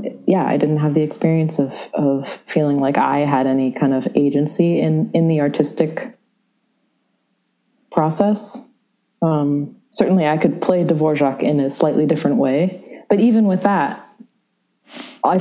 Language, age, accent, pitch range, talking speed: English, 20-39, American, 145-210 Hz, 145 wpm